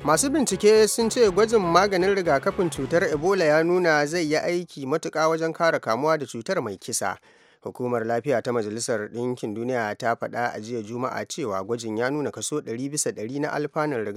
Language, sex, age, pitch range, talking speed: English, male, 30-49, 115-155 Hz, 180 wpm